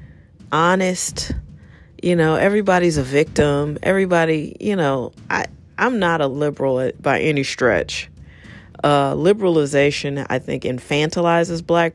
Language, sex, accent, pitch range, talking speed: English, female, American, 130-175 Hz, 110 wpm